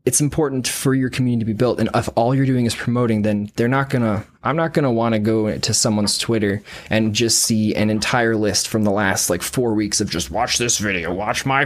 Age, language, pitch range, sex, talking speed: 20-39, English, 105-135 Hz, male, 250 wpm